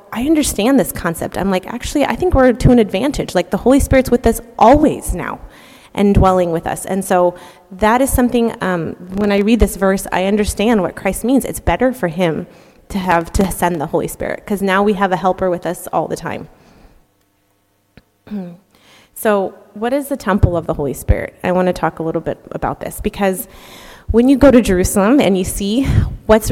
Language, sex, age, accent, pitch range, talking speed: English, female, 30-49, American, 175-220 Hz, 205 wpm